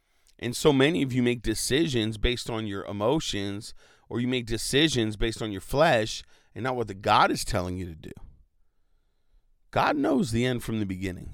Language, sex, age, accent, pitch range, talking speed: English, male, 40-59, American, 100-120 Hz, 190 wpm